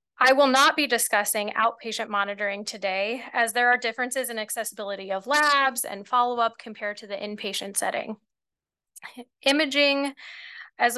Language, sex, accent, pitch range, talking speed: English, female, American, 210-255 Hz, 135 wpm